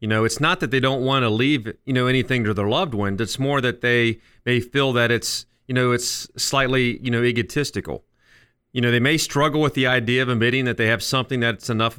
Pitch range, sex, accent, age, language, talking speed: 115-135 Hz, male, American, 40-59, English, 240 wpm